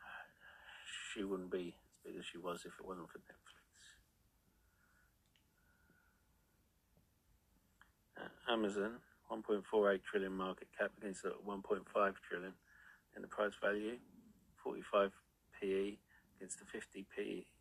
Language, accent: English, British